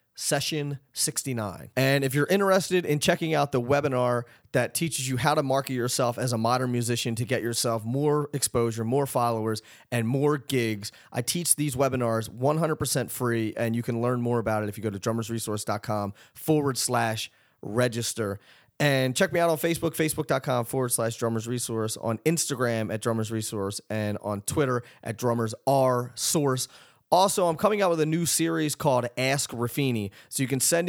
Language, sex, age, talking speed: English, male, 30-49, 170 wpm